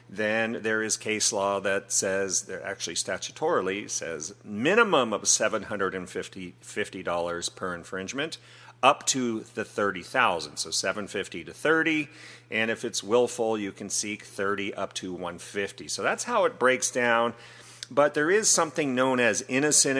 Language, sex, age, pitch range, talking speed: English, male, 40-59, 100-125 Hz, 170 wpm